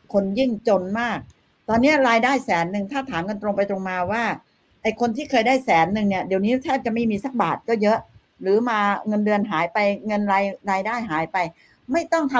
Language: Thai